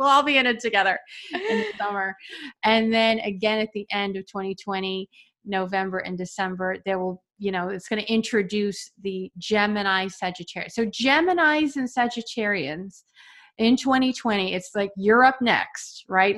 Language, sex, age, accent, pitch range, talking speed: English, female, 30-49, American, 195-235 Hz, 160 wpm